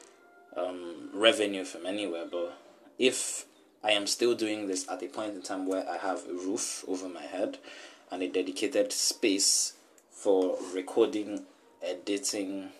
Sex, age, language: male, 20-39, English